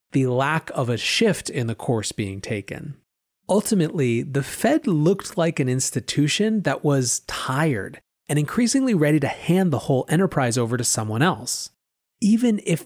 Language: English